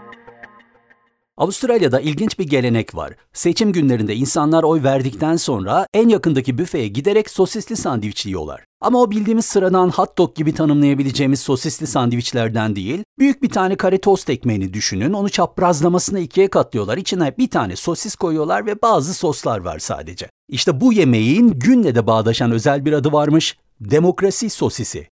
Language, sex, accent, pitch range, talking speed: Turkish, male, native, 120-185 Hz, 150 wpm